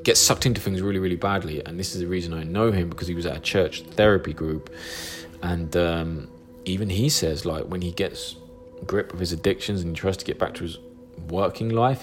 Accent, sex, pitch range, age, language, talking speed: British, male, 90-110 Hz, 20-39, English, 225 wpm